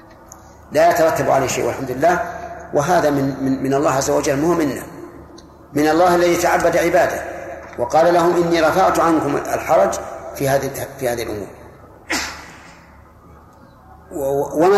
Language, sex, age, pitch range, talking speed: Arabic, male, 40-59, 135-170 Hz, 145 wpm